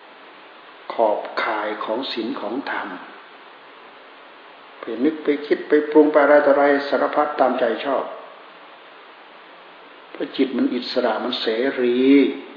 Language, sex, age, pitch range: Thai, male, 60-79, 120-145 Hz